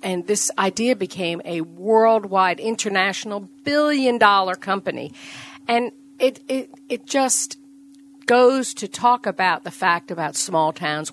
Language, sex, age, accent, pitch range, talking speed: English, female, 50-69, American, 175-235 Hz, 125 wpm